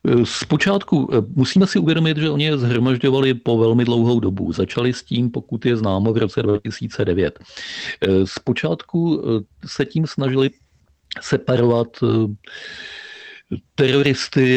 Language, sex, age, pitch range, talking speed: Czech, male, 40-59, 110-135 Hz, 110 wpm